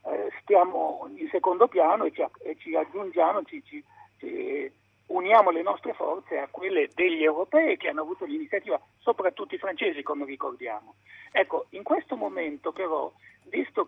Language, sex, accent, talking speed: Italian, male, native, 130 wpm